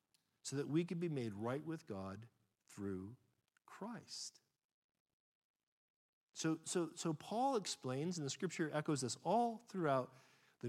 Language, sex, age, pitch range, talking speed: English, male, 50-69, 135-175 Hz, 130 wpm